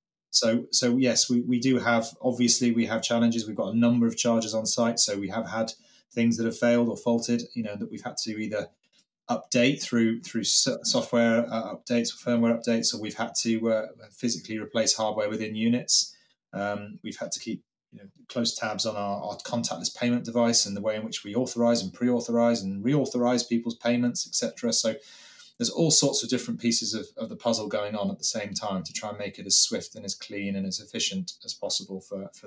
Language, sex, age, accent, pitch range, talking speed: English, male, 20-39, British, 100-120 Hz, 215 wpm